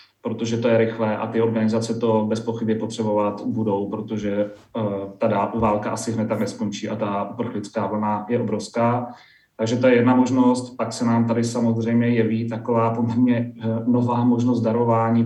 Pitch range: 105-115 Hz